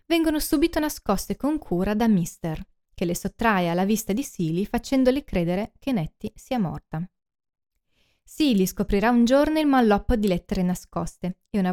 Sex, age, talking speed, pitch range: female, 20-39, 160 wpm, 180-245 Hz